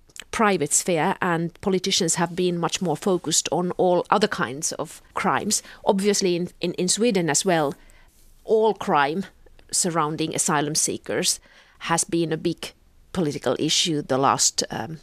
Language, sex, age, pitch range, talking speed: Finnish, female, 40-59, 160-200 Hz, 145 wpm